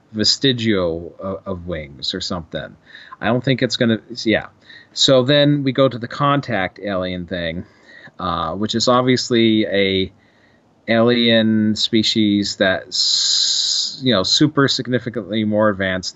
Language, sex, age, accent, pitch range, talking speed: English, male, 40-59, American, 100-125 Hz, 130 wpm